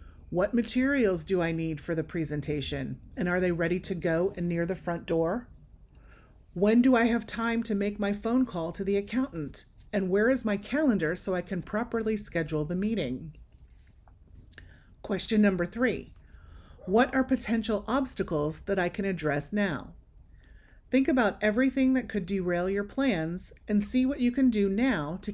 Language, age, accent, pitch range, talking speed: English, 30-49, American, 150-220 Hz, 170 wpm